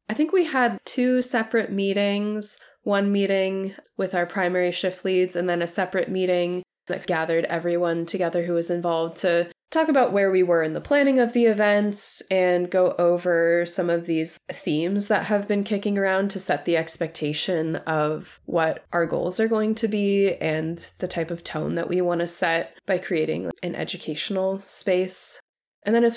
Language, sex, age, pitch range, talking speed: English, female, 20-39, 180-225 Hz, 185 wpm